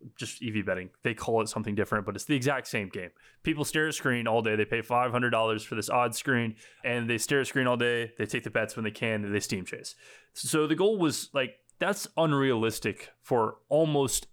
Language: English